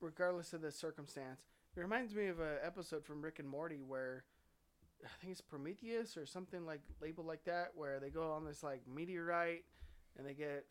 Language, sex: English, male